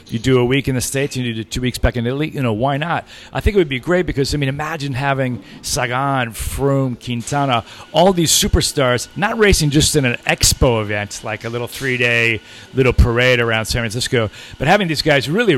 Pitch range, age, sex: 115-145 Hz, 40-59, male